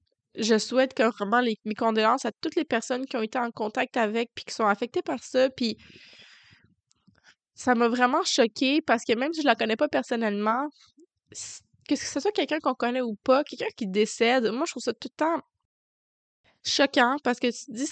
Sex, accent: female, Canadian